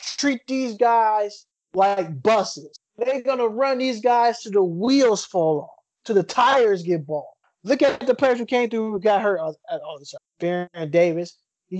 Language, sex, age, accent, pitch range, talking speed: English, male, 20-39, American, 170-220 Hz, 185 wpm